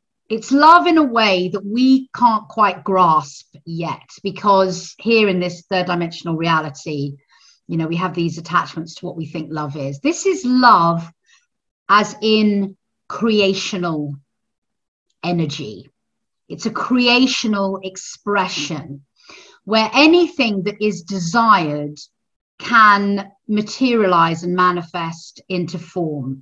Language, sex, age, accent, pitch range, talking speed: English, female, 40-59, British, 170-230 Hz, 120 wpm